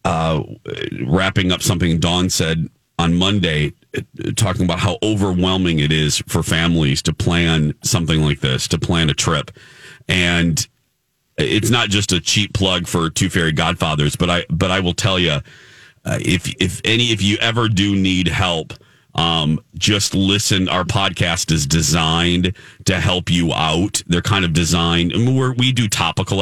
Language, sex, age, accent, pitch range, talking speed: English, male, 40-59, American, 85-110 Hz, 170 wpm